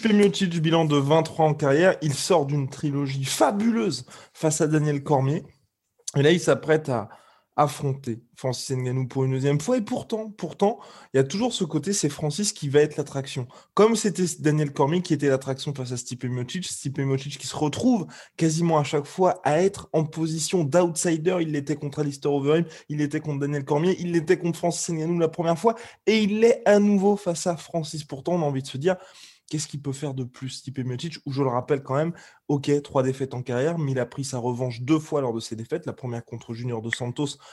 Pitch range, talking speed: 135-170 Hz, 220 wpm